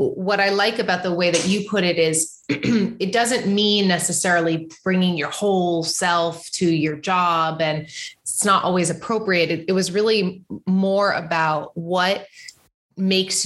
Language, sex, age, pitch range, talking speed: English, female, 20-39, 165-190 Hz, 155 wpm